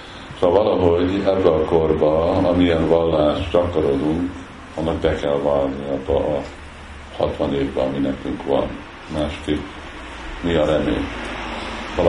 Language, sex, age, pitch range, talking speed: Hungarian, male, 50-69, 75-90 Hz, 120 wpm